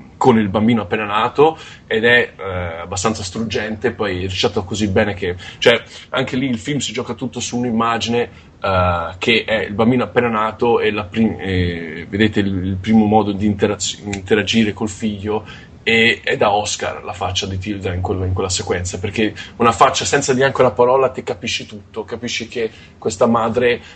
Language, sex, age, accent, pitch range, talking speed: Italian, male, 20-39, native, 100-120 Hz, 180 wpm